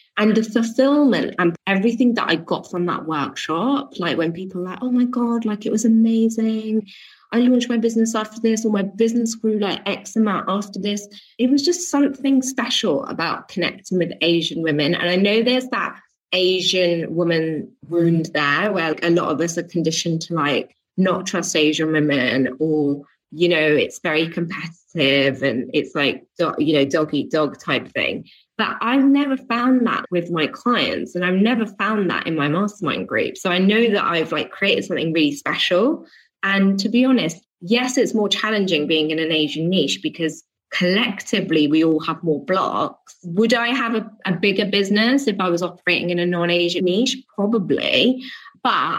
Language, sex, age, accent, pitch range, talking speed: English, female, 20-39, British, 165-225 Hz, 185 wpm